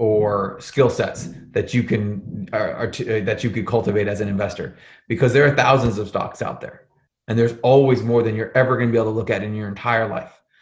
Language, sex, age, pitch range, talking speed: English, male, 30-49, 110-130 Hz, 235 wpm